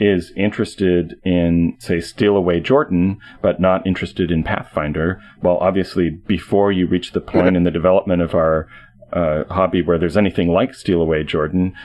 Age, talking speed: 40-59, 165 wpm